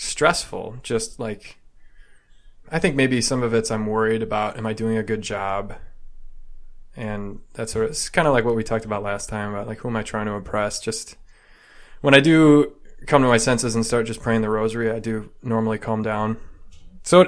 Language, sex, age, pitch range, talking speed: English, male, 20-39, 110-125 Hz, 200 wpm